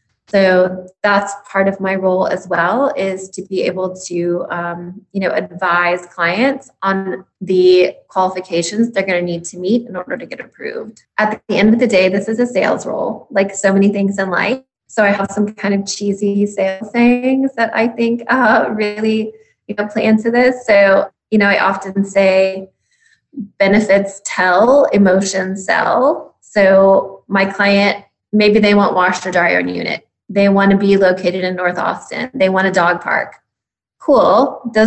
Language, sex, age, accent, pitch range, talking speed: English, female, 20-39, American, 185-220 Hz, 185 wpm